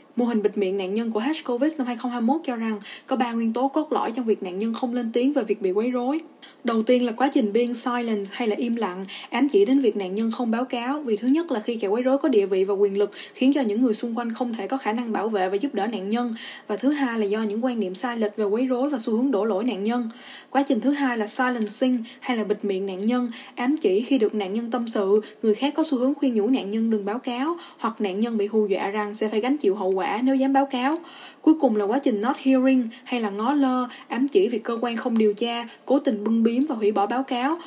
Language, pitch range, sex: Vietnamese, 210-270 Hz, female